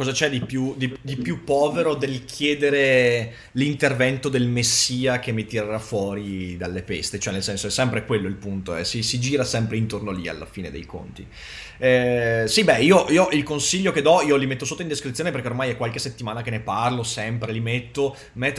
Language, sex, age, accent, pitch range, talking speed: Italian, male, 30-49, native, 120-160 Hz, 205 wpm